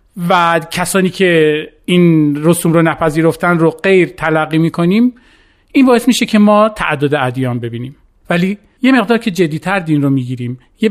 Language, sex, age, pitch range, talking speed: Persian, male, 40-59, 155-205 Hz, 155 wpm